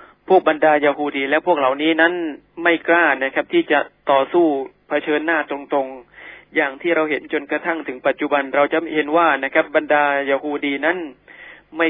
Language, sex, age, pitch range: Thai, male, 20-39, 140-160 Hz